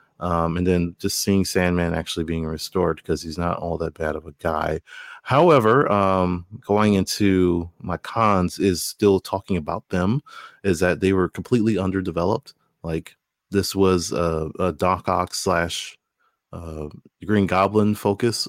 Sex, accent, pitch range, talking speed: male, American, 85-105 Hz, 155 wpm